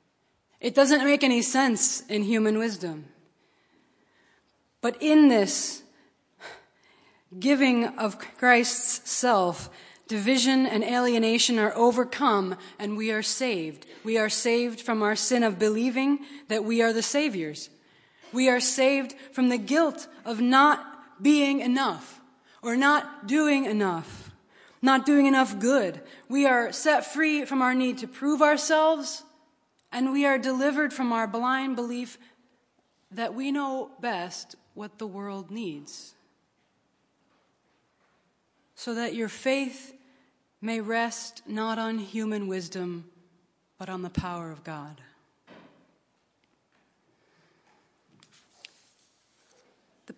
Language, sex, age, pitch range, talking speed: English, female, 20-39, 210-265 Hz, 115 wpm